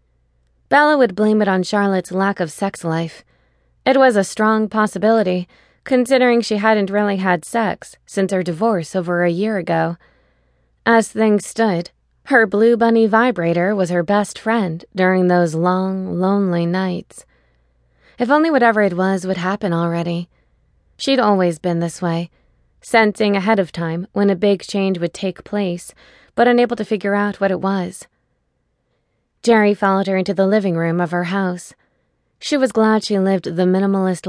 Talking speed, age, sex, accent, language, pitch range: 165 wpm, 20-39, female, American, English, 180-220 Hz